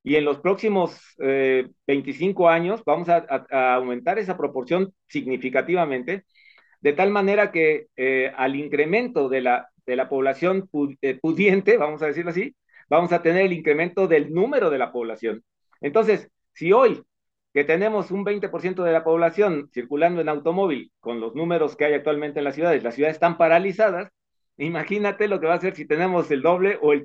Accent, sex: Mexican, male